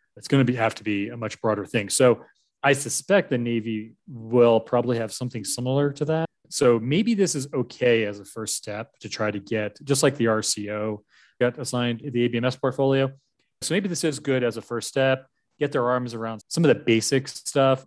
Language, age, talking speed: English, 30-49, 210 wpm